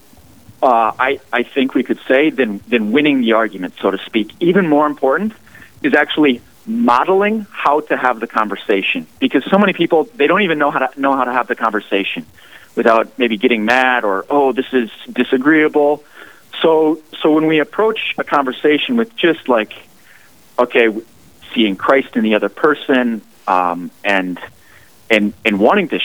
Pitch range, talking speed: 105-155 Hz, 170 wpm